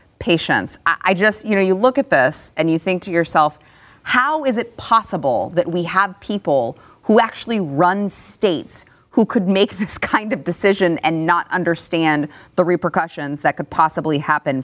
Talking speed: 170 wpm